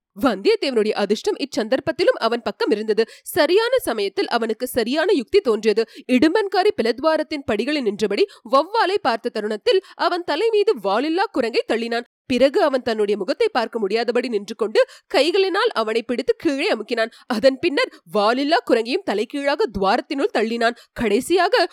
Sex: female